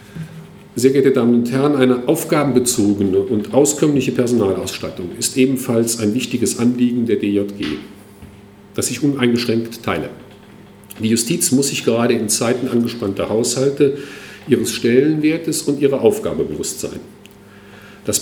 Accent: German